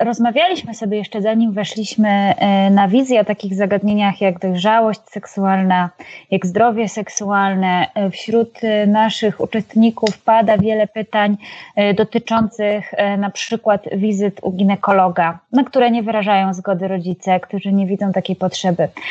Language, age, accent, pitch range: Polish, 20-39, native, 195-225 Hz